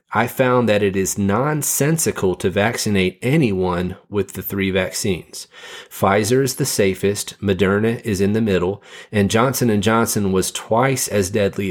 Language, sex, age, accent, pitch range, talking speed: English, male, 40-59, American, 95-115 Hz, 150 wpm